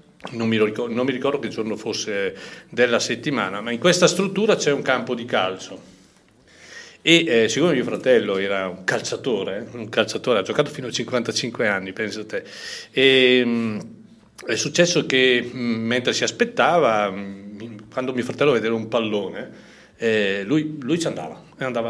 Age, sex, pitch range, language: 40-59, male, 115-155 Hz, Italian